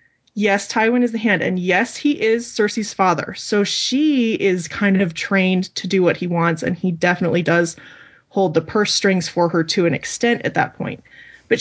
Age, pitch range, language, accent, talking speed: 20-39, 170-215 Hz, English, American, 200 wpm